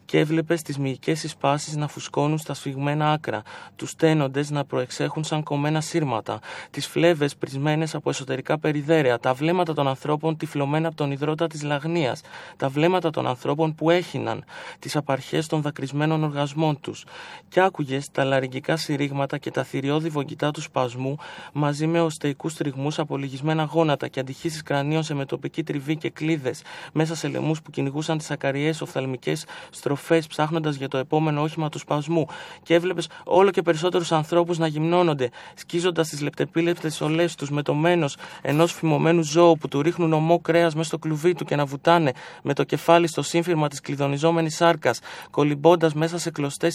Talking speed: 165 wpm